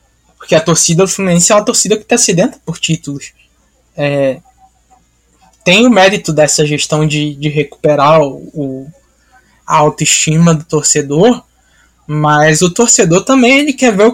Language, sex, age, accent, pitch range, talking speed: Portuguese, male, 20-39, Brazilian, 150-185 Hz, 155 wpm